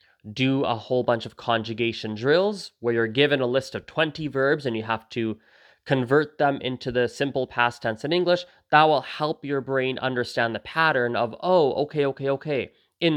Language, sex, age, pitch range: English, male, 20-39, 115-150 Hz